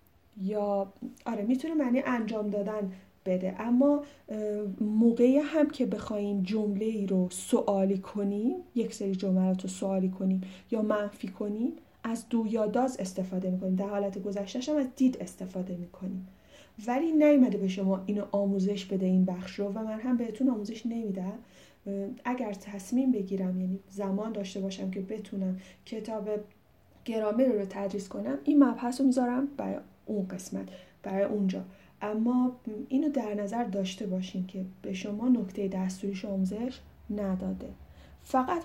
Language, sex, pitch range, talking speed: Persian, female, 195-250 Hz, 135 wpm